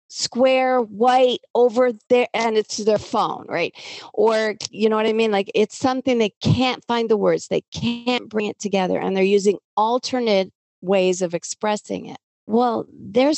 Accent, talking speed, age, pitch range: American, 170 wpm, 50-69, 190-250 Hz